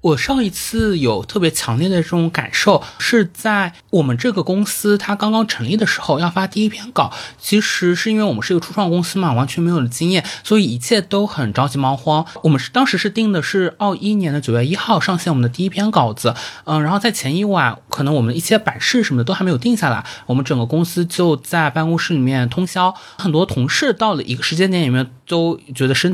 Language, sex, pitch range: Chinese, male, 135-205 Hz